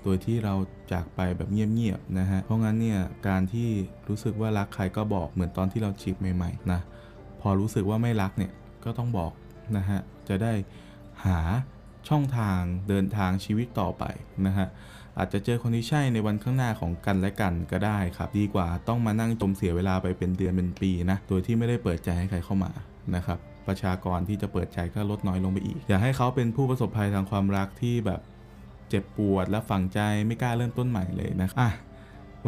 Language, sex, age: Thai, male, 20-39